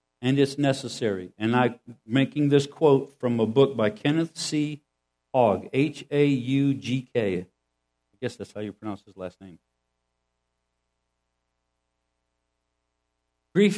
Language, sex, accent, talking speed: English, male, American, 115 wpm